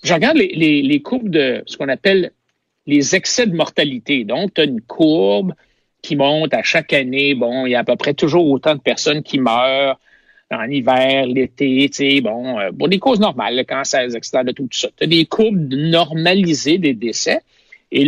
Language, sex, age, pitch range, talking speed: French, male, 60-79, 140-210 Hz, 205 wpm